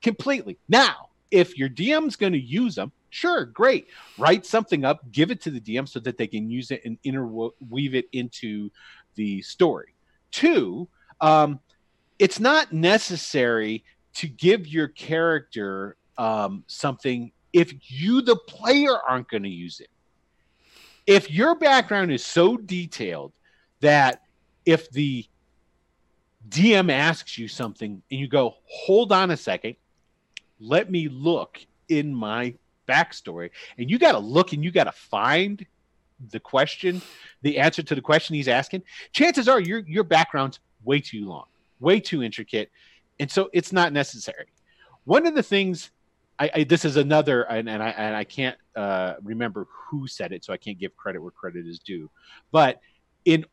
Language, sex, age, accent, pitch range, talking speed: English, male, 40-59, American, 115-180 Hz, 160 wpm